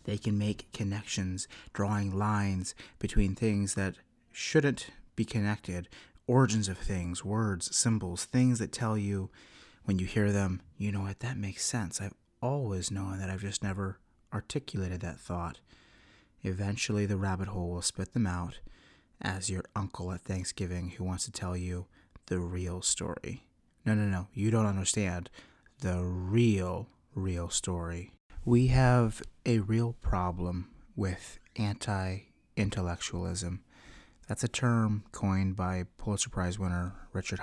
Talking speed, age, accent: 140 wpm, 30-49, American